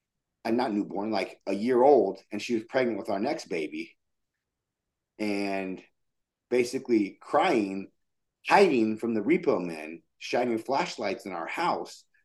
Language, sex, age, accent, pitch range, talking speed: English, male, 30-49, American, 100-125 Hz, 130 wpm